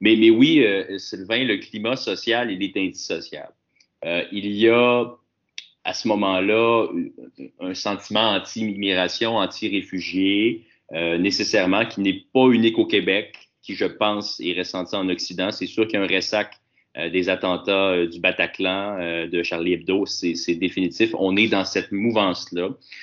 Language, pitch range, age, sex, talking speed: French, 95-125 Hz, 30-49, male, 160 wpm